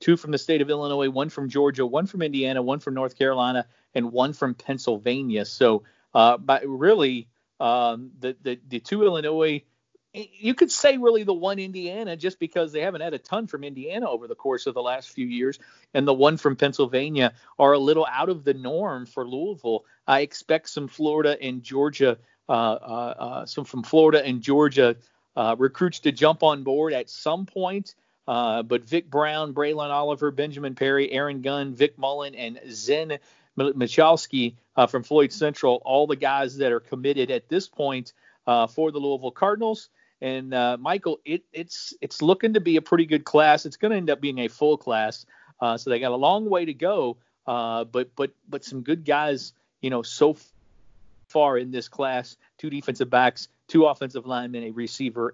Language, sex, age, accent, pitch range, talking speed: English, male, 40-59, American, 125-155 Hz, 190 wpm